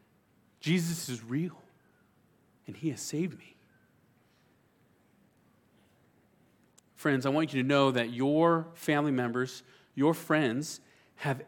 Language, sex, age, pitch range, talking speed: English, male, 40-59, 130-160 Hz, 110 wpm